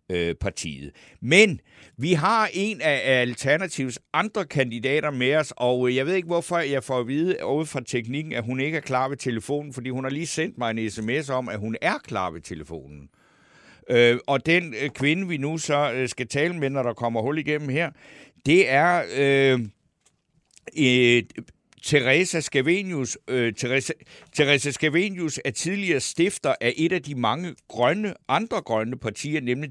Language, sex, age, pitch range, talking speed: Danish, male, 60-79, 120-155 Hz, 165 wpm